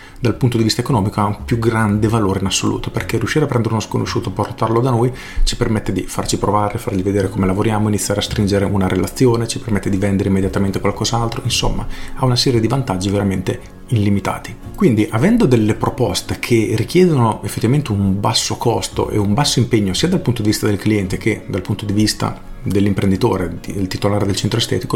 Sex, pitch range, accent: male, 100-125 Hz, native